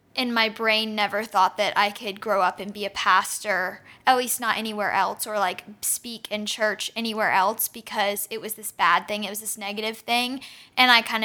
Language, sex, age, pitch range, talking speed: English, female, 10-29, 205-230 Hz, 215 wpm